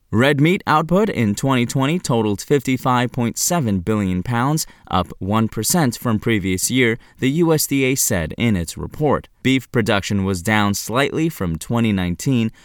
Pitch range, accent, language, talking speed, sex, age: 105-150 Hz, American, English, 130 wpm, male, 20-39